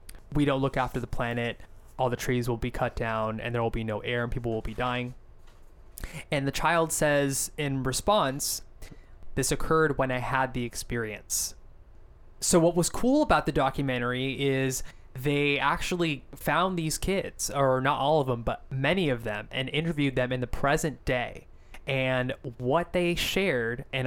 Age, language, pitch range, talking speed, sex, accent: 20-39, English, 120-150 Hz, 175 wpm, male, American